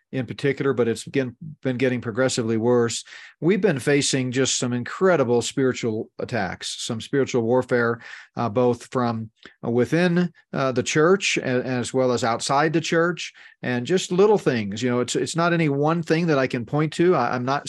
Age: 40-59